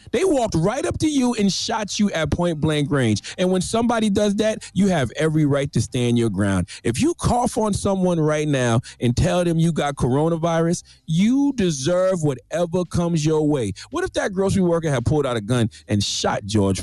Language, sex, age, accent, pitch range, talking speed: English, male, 40-59, American, 110-170 Hz, 205 wpm